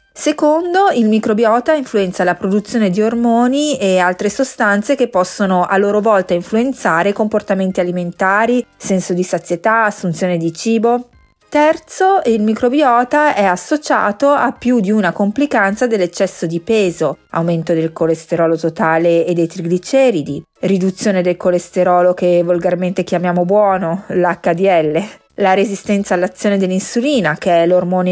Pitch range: 180-230 Hz